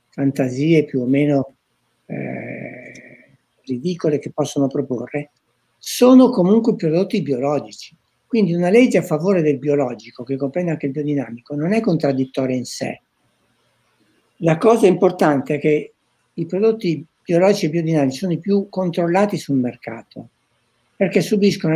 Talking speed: 130 wpm